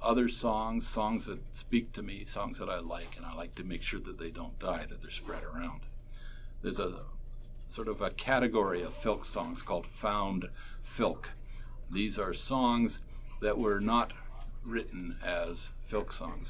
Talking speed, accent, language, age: 170 wpm, American, English, 50-69